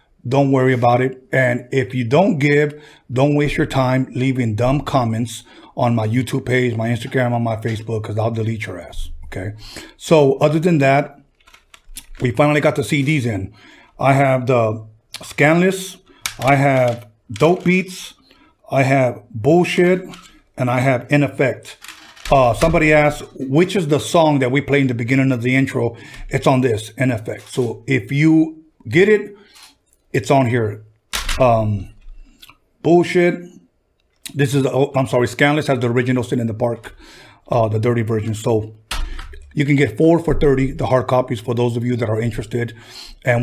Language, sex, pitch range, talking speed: English, male, 120-145 Hz, 170 wpm